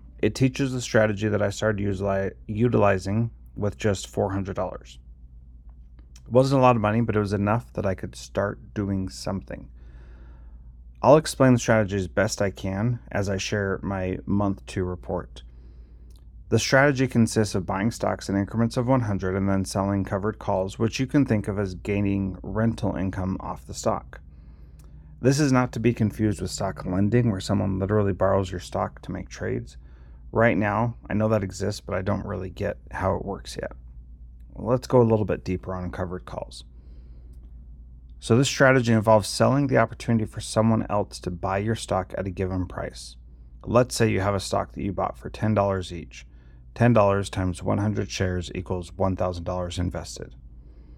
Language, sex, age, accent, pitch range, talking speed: English, male, 30-49, American, 75-110 Hz, 175 wpm